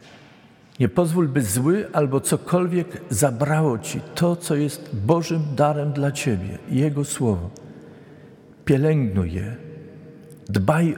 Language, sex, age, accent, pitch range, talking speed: Polish, male, 50-69, native, 100-140 Hz, 110 wpm